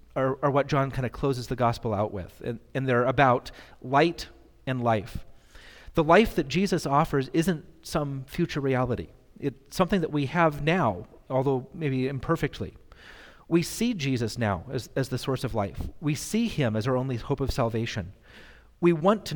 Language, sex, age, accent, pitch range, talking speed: English, male, 40-59, American, 125-160 Hz, 180 wpm